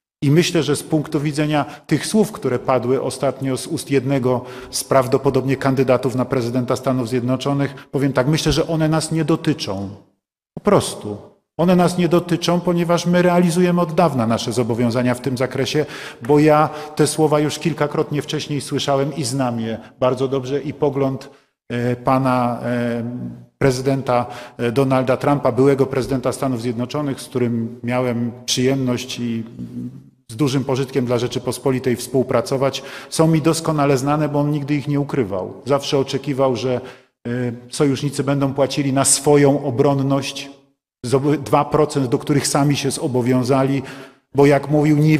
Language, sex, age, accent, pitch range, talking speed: Polish, male, 40-59, native, 125-145 Hz, 145 wpm